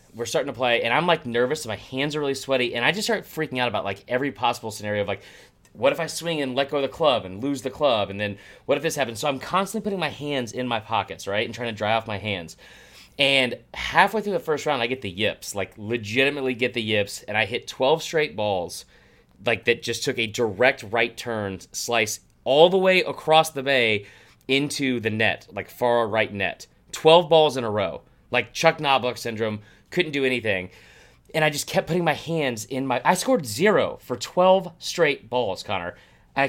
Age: 30-49